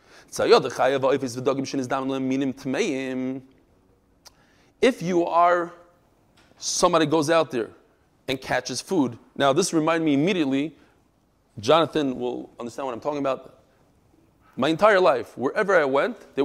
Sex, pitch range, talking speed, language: male, 130-210 Hz, 105 wpm, English